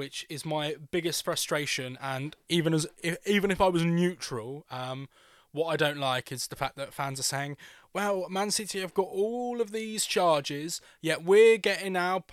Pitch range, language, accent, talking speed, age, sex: 140-185 Hz, English, British, 190 wpm, 20-39, male